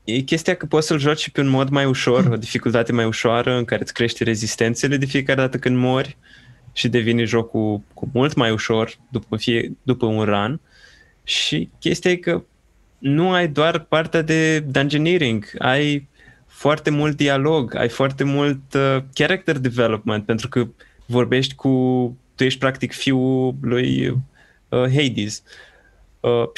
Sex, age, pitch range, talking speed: male, 20-39, 115-135 Hz, 160 wpm